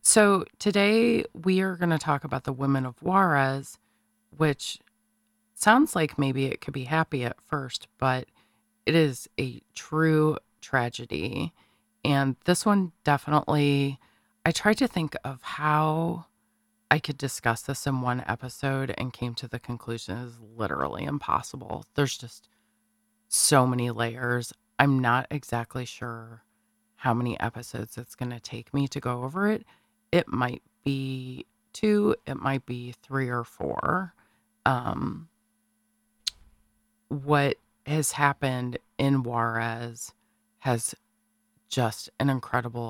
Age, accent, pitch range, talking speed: 30-49, American, 115-150 Hz, 130 wpm